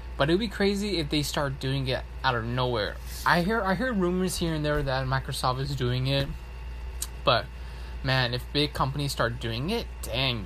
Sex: male